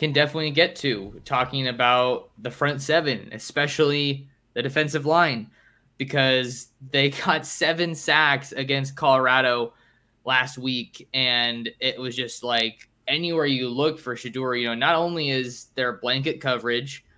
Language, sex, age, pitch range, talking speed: English, male, 20-39, 125-150 Hz, 140 wpm